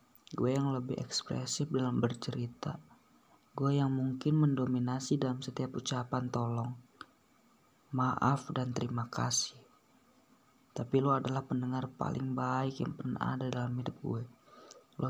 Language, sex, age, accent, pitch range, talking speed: Indonesian, female, 20-39, native, 125-140 Hz, 125 wpm